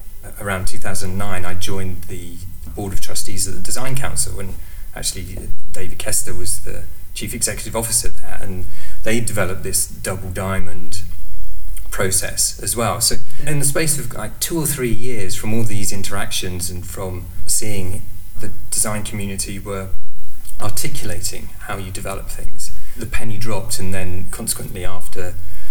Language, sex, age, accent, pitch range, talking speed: English, male, 30-49, British, 90-110 Hz, 150 wpm